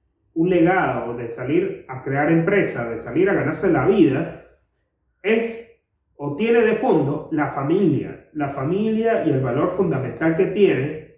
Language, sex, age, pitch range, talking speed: Spanish, male, 30-49, 145-205 Hz, 150 wpm